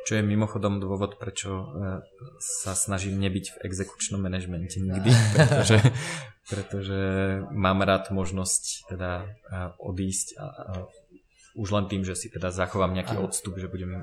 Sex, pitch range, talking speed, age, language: male, 95-105 Hz, 130 wpm, 20-39, Slovak